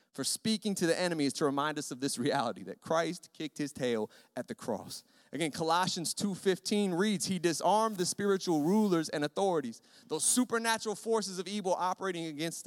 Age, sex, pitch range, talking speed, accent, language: 30-49, male, 165-220 Hz, 180 wpm, American, English